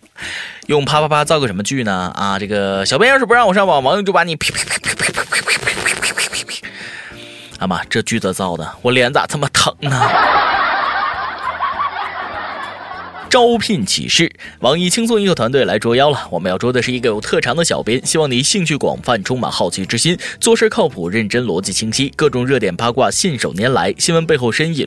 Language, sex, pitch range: Chinese, male, 120-195 Hz